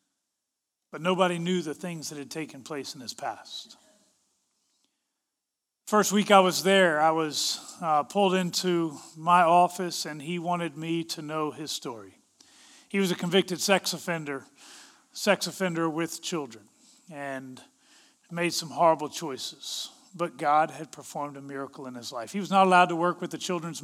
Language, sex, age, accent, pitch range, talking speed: English, male, 40-59, American, 165-205 Hz, 165 wpm